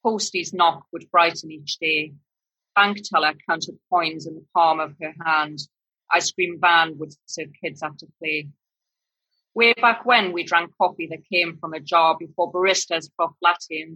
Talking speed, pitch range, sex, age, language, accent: 170 wpm, 155-180 Hz, female, 30-49, English, British